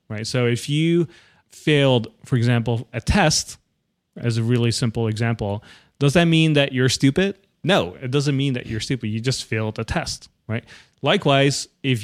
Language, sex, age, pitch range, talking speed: English, male, 30-49, 115-140 Hz, 175 wpm